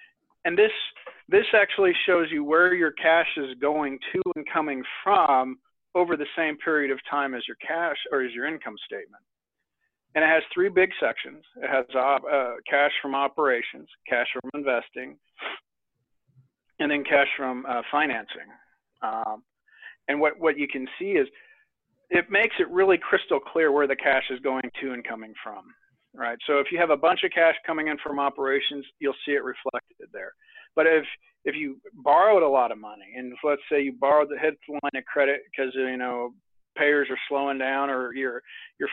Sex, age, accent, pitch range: male, 50-69, American, 135-180 Hz